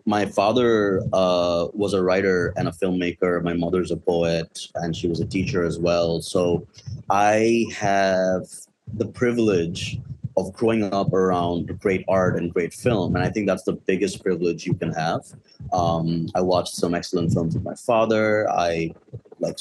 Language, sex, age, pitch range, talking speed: English, male, 30-49, 85-110 Hz, 170 wpm